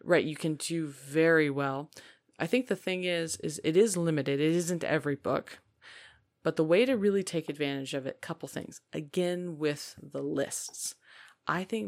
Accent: American